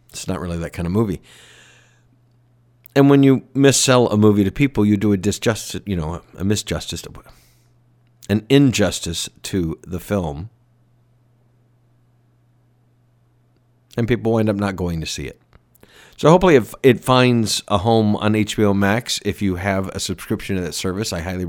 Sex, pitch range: male, 95-120 Hz